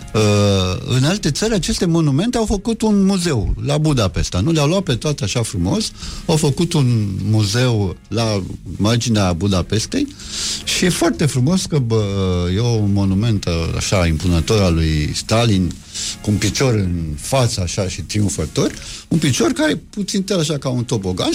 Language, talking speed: Romanian, 160 wpm